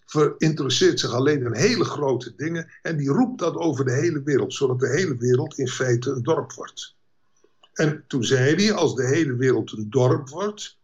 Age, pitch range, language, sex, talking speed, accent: 60-79, 130-170 Hz, Dutch, male, 195 wpm, Dutch